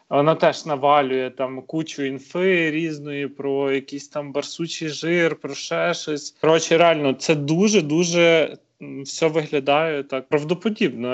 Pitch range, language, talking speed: 140-170 Hz, Ukrainian, 125 wpm